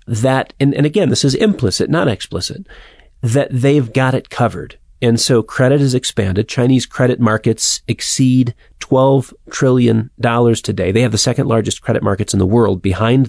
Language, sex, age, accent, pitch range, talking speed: English, male, 40-59, American, 110-140 Hz, 165 wpm